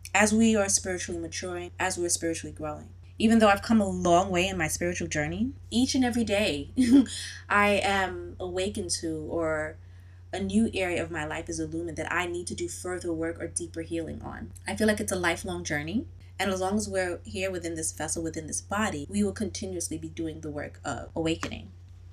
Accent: American